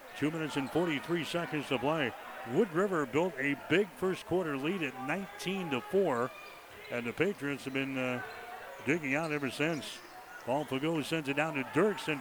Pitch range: 135-165 Hz